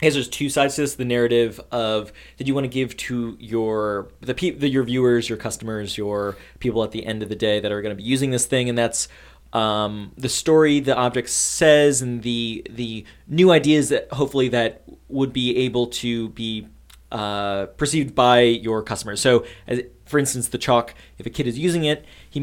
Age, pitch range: 20-39, 110-140 Hz